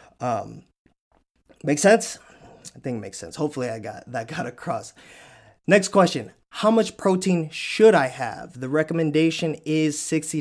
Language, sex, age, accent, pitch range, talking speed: English, male, 20-39, American, 120-145 Hz, 150 wpm